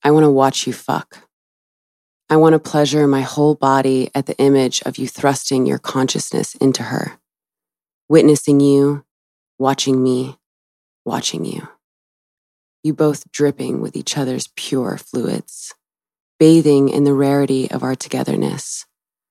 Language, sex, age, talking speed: English, female, 20-39, 130 wpm